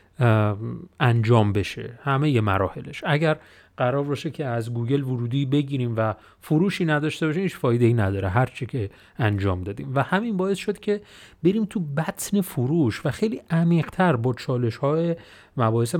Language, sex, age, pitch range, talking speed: Persian, male, 30-49, 120-175 Hz, 145 wpm